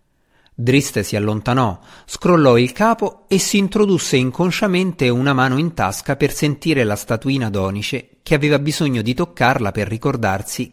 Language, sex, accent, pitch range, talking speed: Italian, male, native, 105-145 Hz, 145 wpm